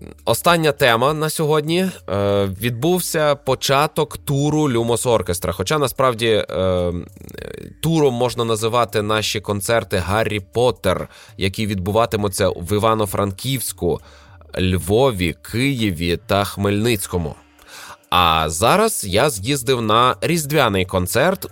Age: 20-39